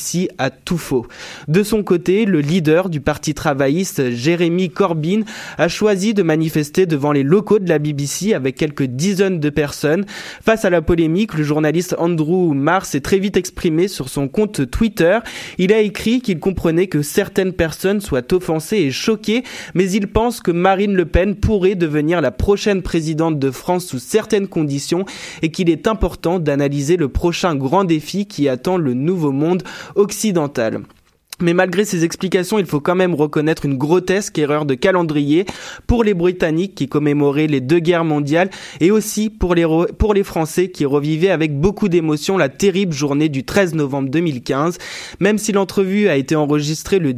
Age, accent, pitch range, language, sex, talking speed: 20-39, French, 150-195 Hz, French, male, 175 wpm